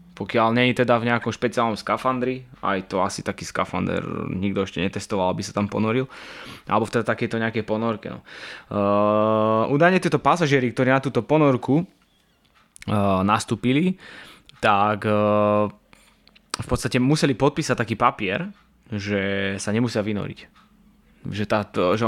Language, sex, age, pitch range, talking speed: Slovak, male, 20-39, 105-125 Hz, 125 wpm